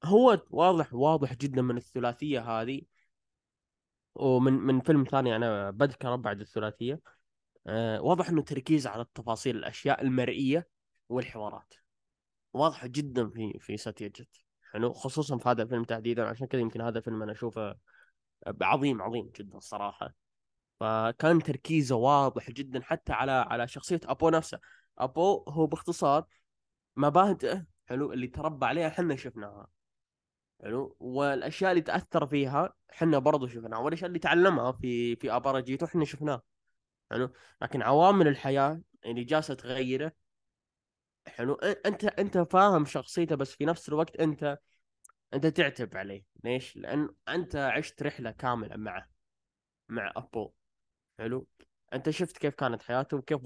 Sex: male